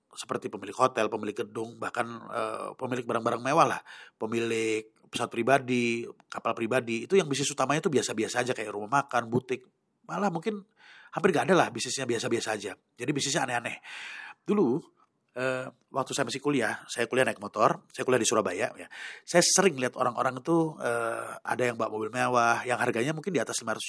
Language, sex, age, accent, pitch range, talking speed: Indonesian, male, 30-49, native, 115-150 Hz, 175 wpm